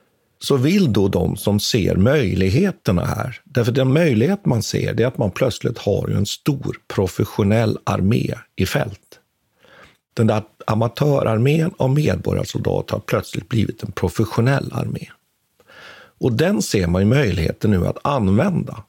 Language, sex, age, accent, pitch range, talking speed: Swedish, male, 50-69, native, 105-140 Hz, 140 wpm